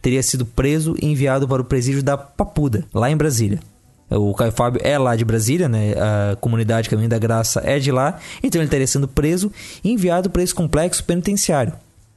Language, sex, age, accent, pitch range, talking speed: Portuguese, male, 20-39, Brazilian, 115-150 Hz, 195 wpm